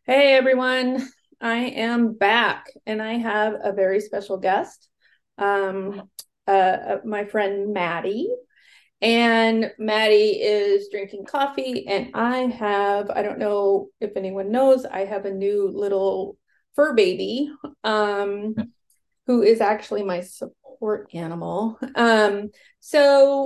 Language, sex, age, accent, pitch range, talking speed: English, female, 30-49, American, 200-255 Hz, 125 wpm